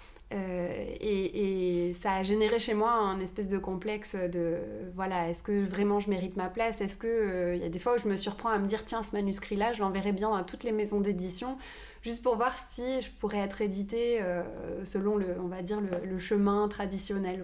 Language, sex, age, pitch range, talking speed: French, female, 20-39, 185-225 Hz, 220 wpm